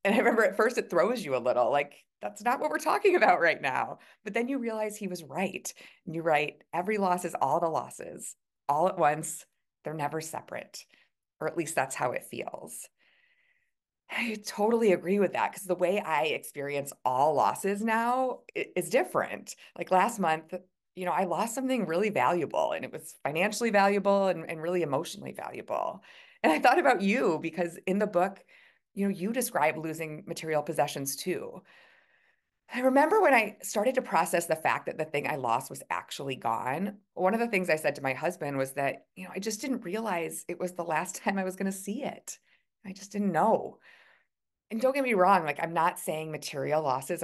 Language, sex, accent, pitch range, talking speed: English, female, American, 155-220 Hz, 205 wpm